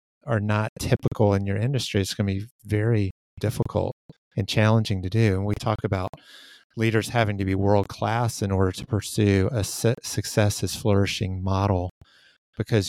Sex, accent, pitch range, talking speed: male, American, 105-115 Hz, 165 wpm